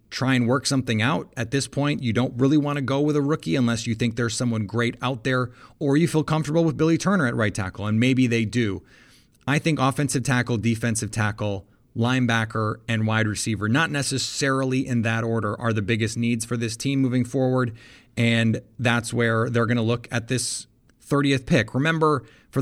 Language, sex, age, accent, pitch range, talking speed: English, male, 30-49, American, 110-130 Hz, 200 wpm